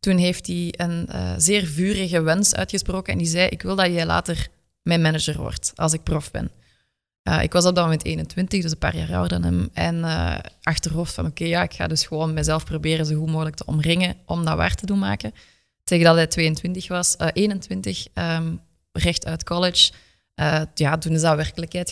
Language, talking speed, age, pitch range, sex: Dutch, 205 wpm, 20-39, 135-175 Hz, female